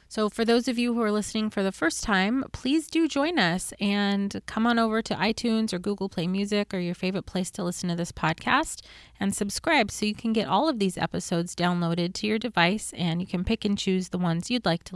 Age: 30-49